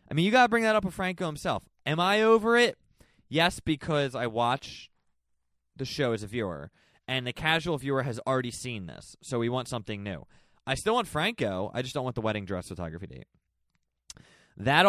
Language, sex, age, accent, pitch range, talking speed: English, male, 20-39, American, 120-175 Hz, 205 wpm